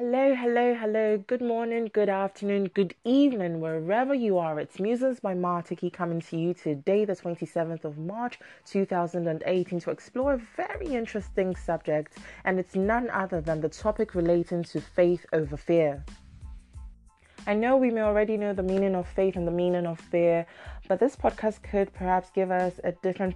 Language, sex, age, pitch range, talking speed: English, female, 20-39, 165-200 Hz, 170 wpm